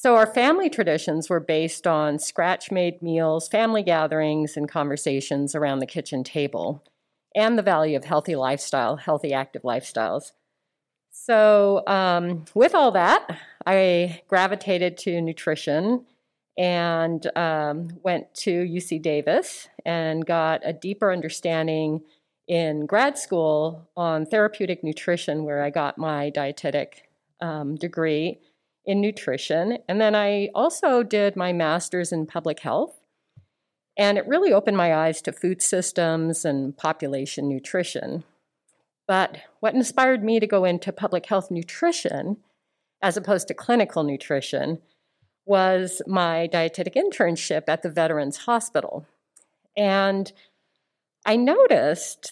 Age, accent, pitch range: 50-69, American, 155-200 Hz